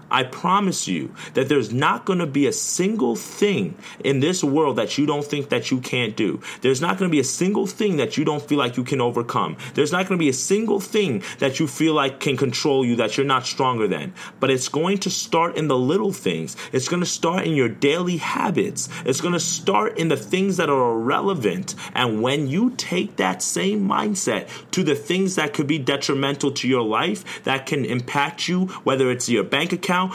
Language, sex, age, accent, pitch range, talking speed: English, male, 30-49, American, 130-175 Hz, 225 wpm